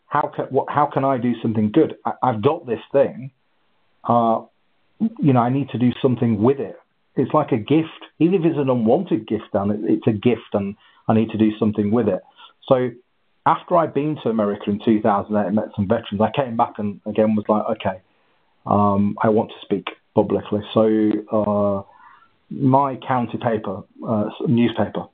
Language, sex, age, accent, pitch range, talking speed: English, male, 40-59, British, 105-130 Hz, 180 wpm